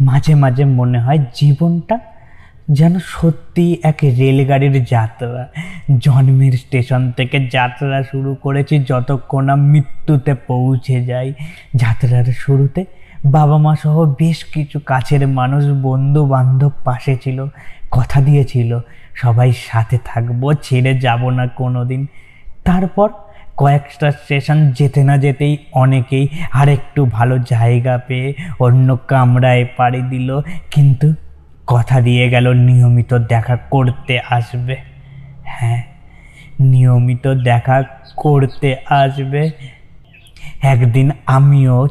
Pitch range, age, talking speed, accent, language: 125-145 Hz, 20-39, 105 wpm, native, Bengali